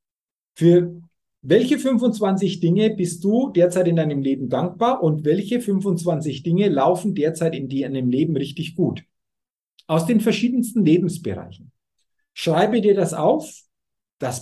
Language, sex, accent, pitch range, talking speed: German, male, German, 155-210 Hz, 130 wpm